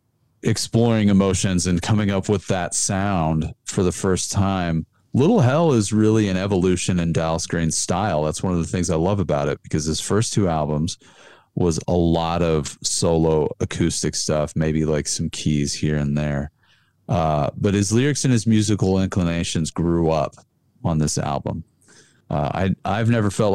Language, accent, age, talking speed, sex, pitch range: English, American, 40-59, 170 wpm, male, 80-105 Hz